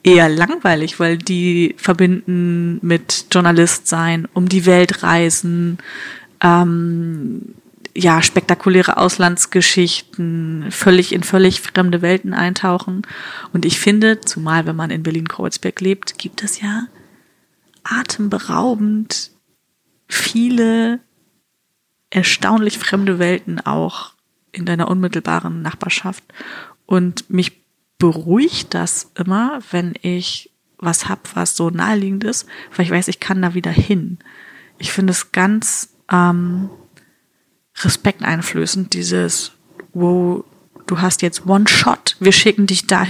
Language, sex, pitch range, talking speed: German, female, 170-195 Hz, 115 wpm